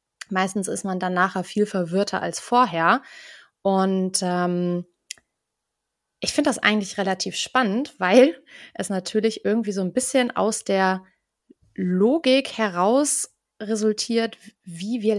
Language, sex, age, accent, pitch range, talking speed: German, female, 20-39, German, 180-220 Hz, 125 wpm